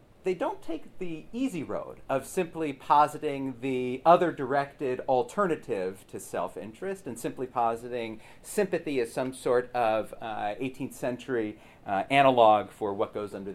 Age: 40-59